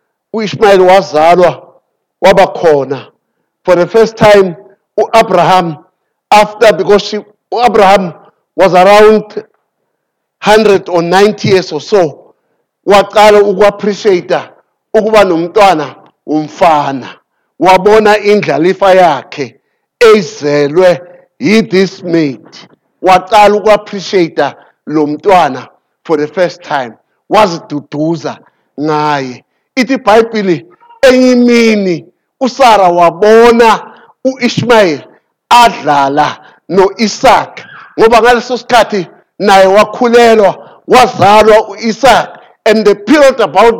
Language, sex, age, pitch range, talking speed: English, male, 50-69, 180-235 Hz, 80 wpm